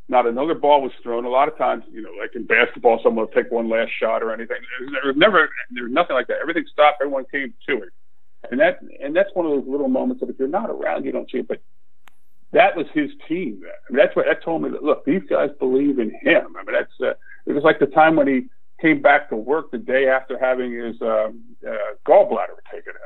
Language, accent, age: English, American, 50-69